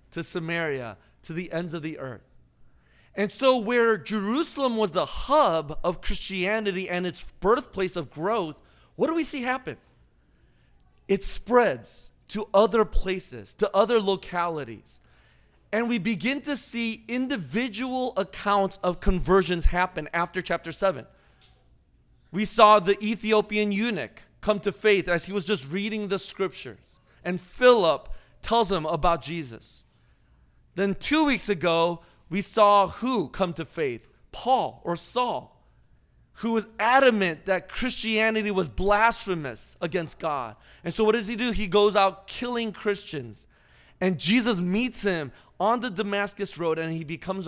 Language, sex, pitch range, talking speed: English, male, 170-220 Hz, 145 wpm